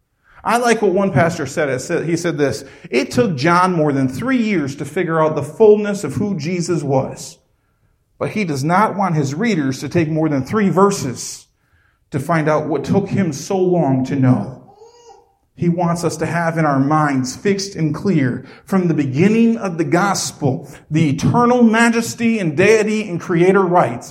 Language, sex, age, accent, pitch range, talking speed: English, male, 40-59, American, 155-245 Hz, 180 wpm